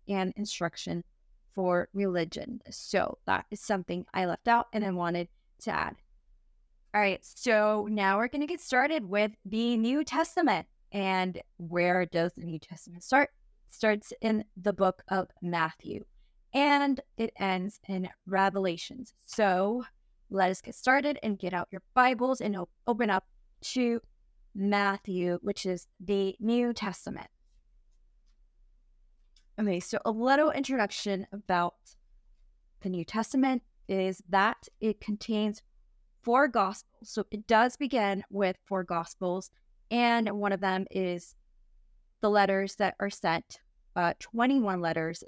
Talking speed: 135 wpm